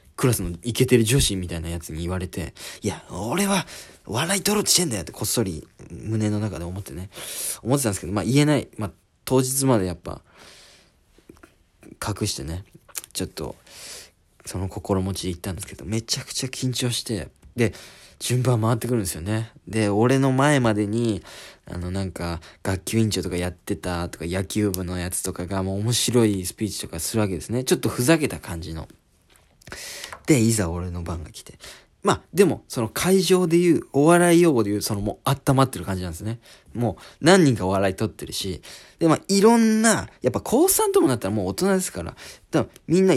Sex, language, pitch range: male, Japanese, 95-140 Hz